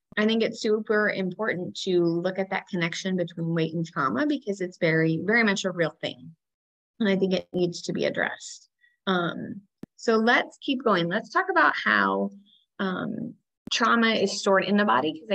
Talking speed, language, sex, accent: 185 wpm, English, female, American